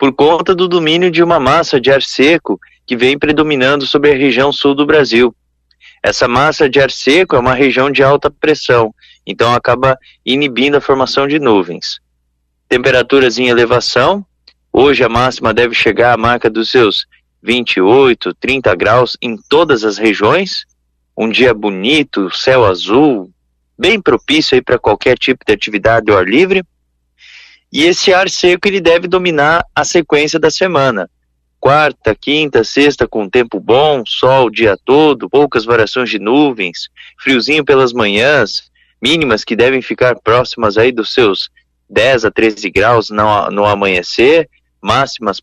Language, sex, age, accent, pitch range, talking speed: Portuguese, male, 20-39, Brazilian, 115-160 Hz, 150 wpm